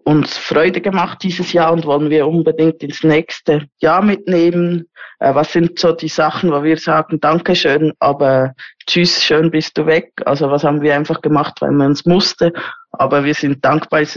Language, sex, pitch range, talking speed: German, female, 150-170 Hz, 180 wpm